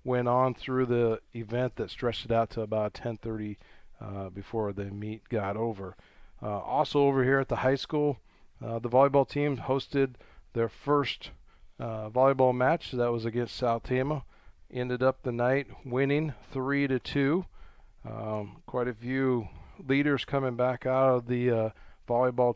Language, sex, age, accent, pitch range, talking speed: English, male, 40-59, American, 110-125 Hz, 160 wpm